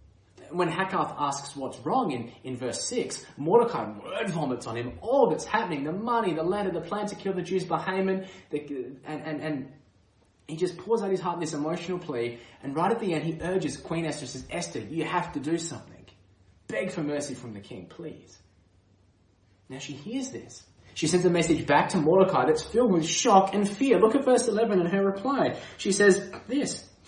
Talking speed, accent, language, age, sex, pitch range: 200 wpm, Australian, English, 20-39, male, 120-180 Hz